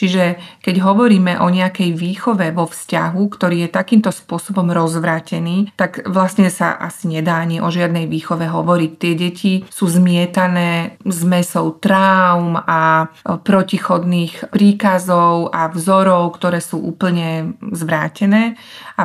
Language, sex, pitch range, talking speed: Slovak, female, 170-195 Hz, 125 wpm